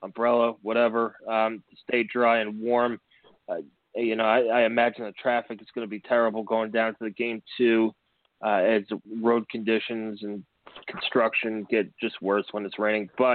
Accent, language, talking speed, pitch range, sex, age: American, English, 175 wpm, 110-125 Hz, male, 30-49